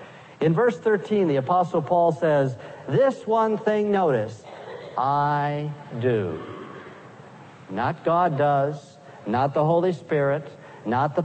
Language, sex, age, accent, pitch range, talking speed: English, male, 50-69, American, 145-195 Hz, 115 wpm